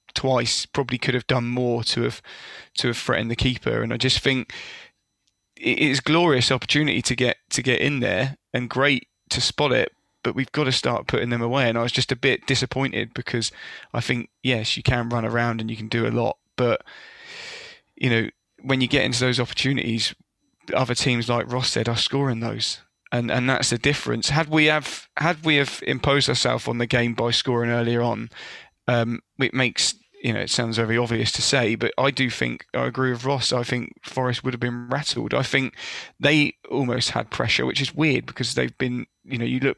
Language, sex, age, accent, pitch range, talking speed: English, male, 20-39, British, 120-135 Hz, 210 wpm